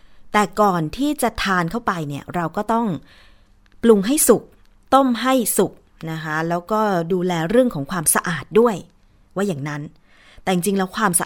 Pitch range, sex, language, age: 170-220 Hz, female, Thai, 20-39